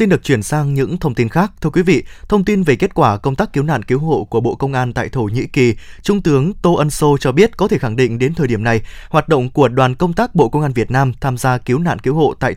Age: 20-39